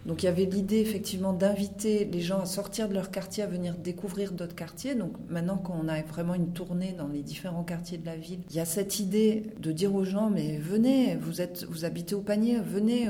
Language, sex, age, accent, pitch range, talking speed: French, female, 40-59, French, 170-200 Hz, 235 wpm